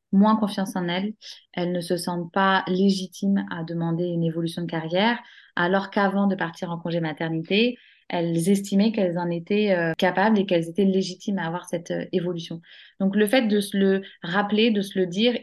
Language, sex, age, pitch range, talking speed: French, female, 20-39, 175-210 Hz, 195 wpm